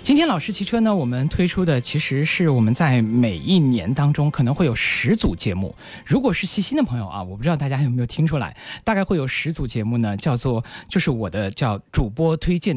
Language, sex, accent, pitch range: Chinese, male, native, 120-195 Hz